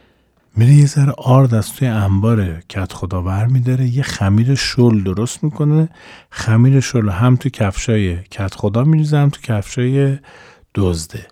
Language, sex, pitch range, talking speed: Persian, male, 110-145 Hz, 135 wpm